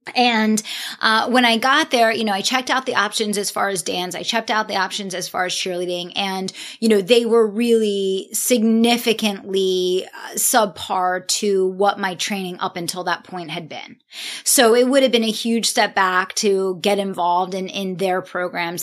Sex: female